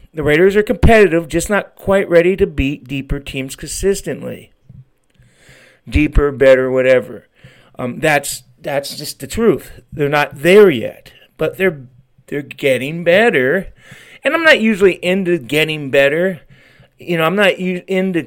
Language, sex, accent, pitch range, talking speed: English, male, American, 130-180 Hz, 140 wpm